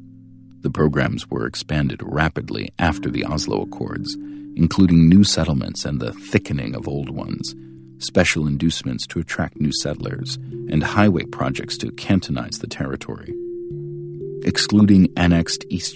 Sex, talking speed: male, 130 wpm